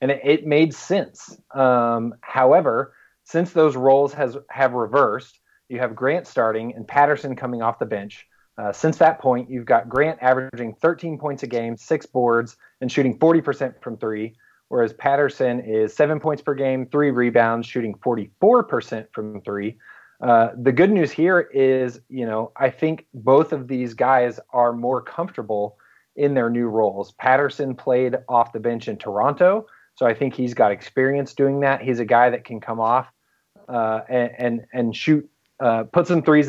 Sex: male